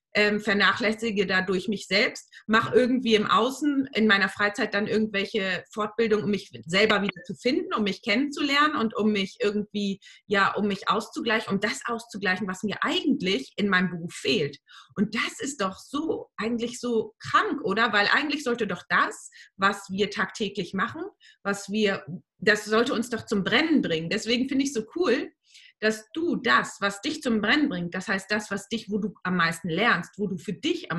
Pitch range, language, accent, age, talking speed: 200-240 Hz, German, German, 30-49, 190 wpm